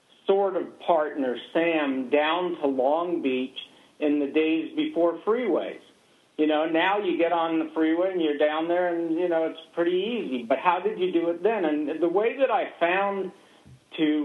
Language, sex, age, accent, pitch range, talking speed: English, male, 50-69, American, 135-170 Hz, 190 wpm